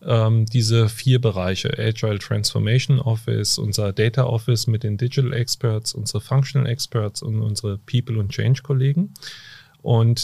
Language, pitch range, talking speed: German, 110-130 Hz, 130 wpm